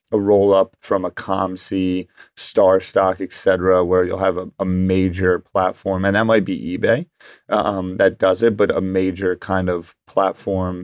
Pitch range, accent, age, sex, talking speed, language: 95-100 Hz, American, 30-49, male, 175 wpm, English